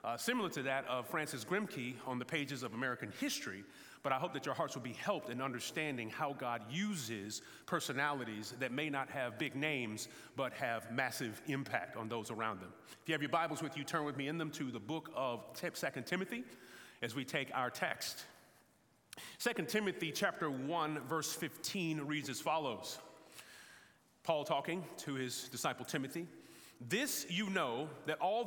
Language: English